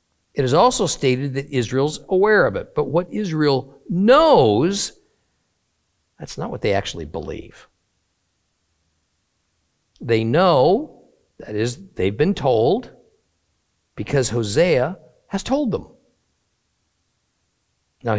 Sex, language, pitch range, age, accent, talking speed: male, English, 110-155 Hz, 50-69, American, 105 wpm